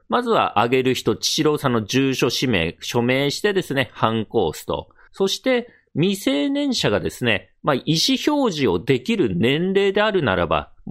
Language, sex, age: Japanese, male, 40-59